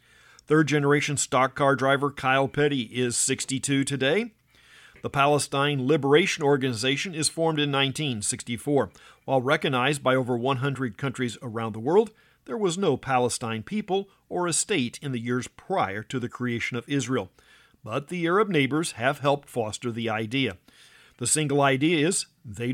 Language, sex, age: English, male, 50-69